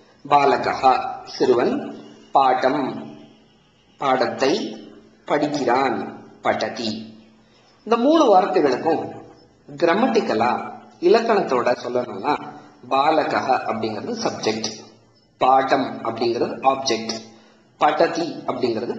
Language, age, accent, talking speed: Tamil, 50-69, native, 65 wpm